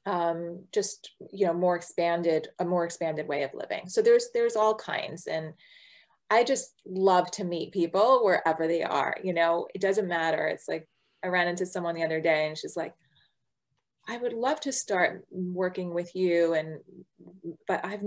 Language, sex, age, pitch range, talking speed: English, female, 30-49, 165-205 Hz, 185 wpm